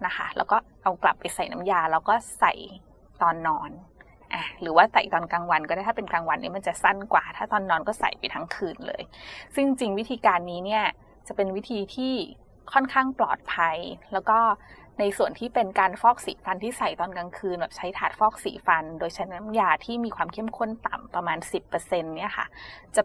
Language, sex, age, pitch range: English, female, 20-39, 180-235 Hz